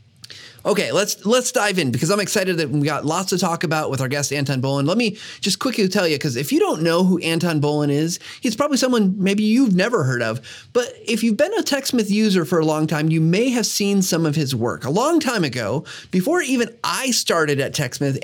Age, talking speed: 30-49, 235 wpm